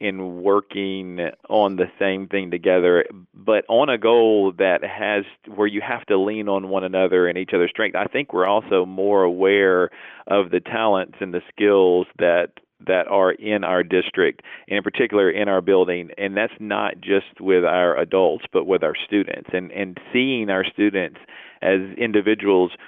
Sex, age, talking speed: male, 40-59, 175 wpm